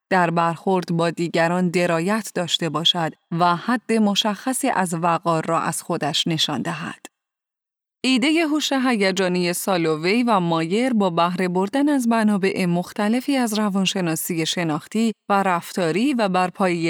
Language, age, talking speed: Persian, 30-49, 130 wpm